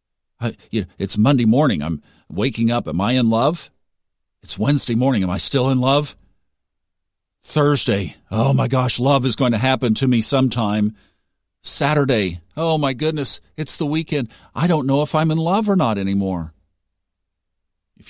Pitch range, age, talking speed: 90-135 Hz, 50-69, 160 wpm